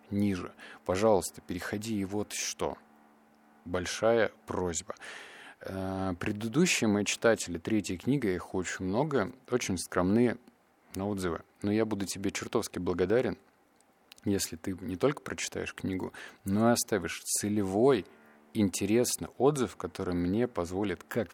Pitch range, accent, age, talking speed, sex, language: 90-110 Hz, native, 30-49, 120 wpm, male, Russian